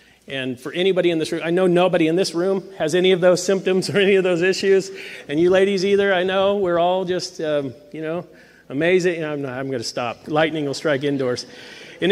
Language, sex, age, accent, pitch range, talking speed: English, male, 40-59, American, 150-185 Hz, 220 wpm